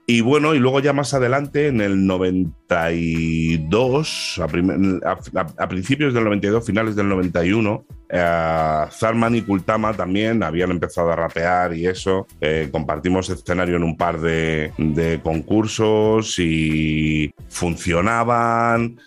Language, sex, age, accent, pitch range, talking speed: Spanish, male, 30-49, Spanish, 85-110 Hz, 130 wpm